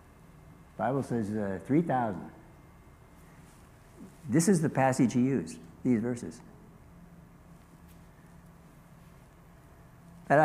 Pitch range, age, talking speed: 105-135 Hz, 60-79, 80 wpm